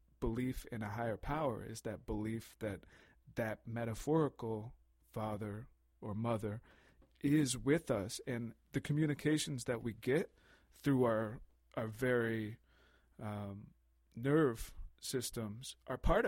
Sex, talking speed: male, 120 wpm